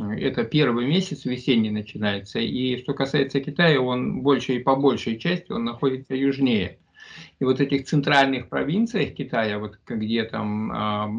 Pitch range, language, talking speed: 120-155 Hz, Russian, 150 wpm